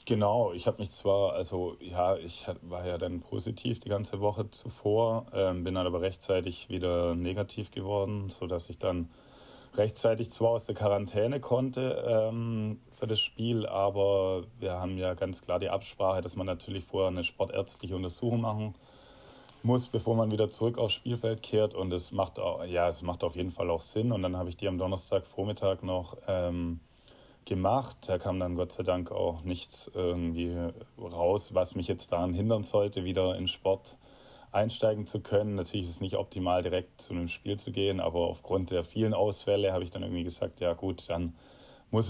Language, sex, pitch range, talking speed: German, male, 90-105 Hz, 185 wpm